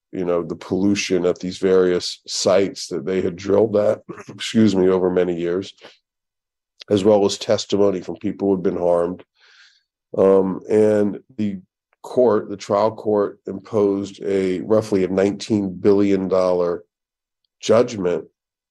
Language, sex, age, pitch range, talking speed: English, male, 50-69, 95-110 Hz, 140 wpm